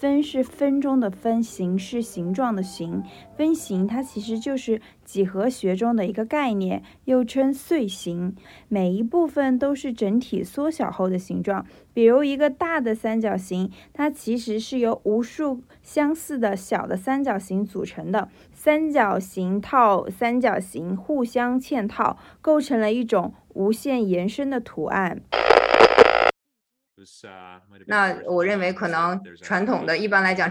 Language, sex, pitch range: Chinese, female, 180-230 Hz